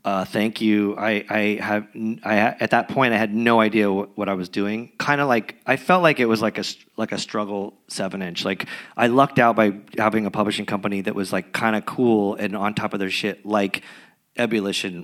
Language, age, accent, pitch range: English, 30-49, American, 105-125 Hz